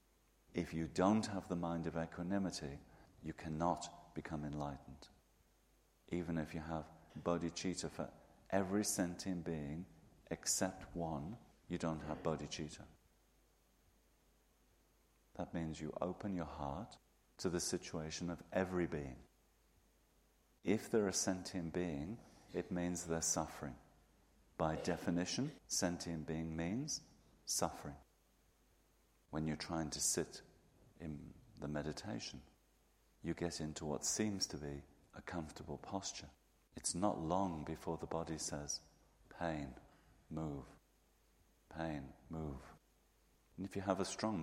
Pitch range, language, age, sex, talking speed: 75-85 Hz, English, 50-69, male, 120 wpm